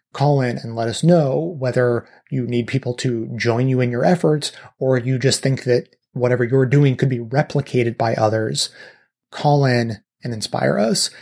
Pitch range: 125-150 Hz